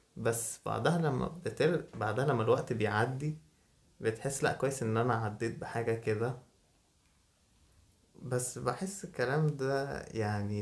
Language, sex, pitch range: Arabic, male, 110-135 Hz